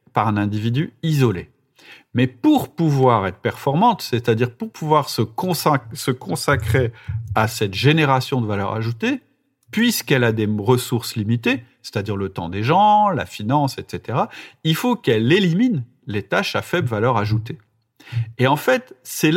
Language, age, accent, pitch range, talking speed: French, 40-59, French, 115-155 Hz, 145 wpm